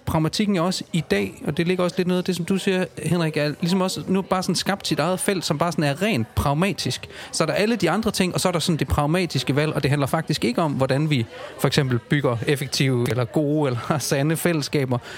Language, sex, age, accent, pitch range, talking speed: Danish, male, 30-49, native, 140-185 Hz, 255 wpm